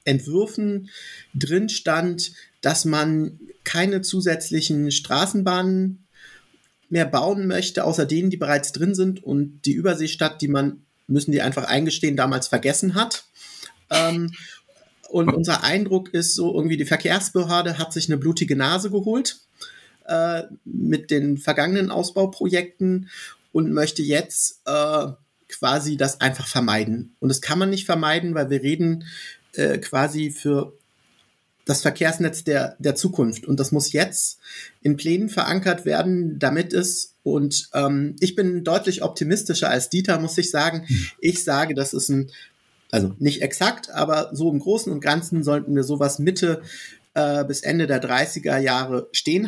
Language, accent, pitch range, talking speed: German, German, 140-180 Hz, 145 wpm